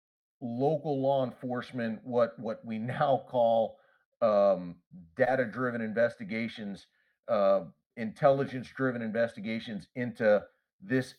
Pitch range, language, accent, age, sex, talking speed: 110-135 Hz, English, American, 40-59, male, 85 wpm